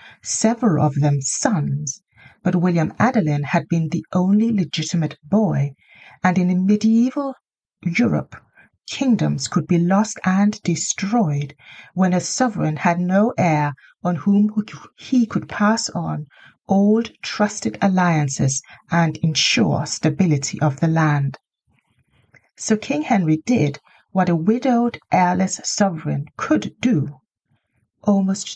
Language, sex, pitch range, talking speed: English, female, 150-210 Hz, 120 wpm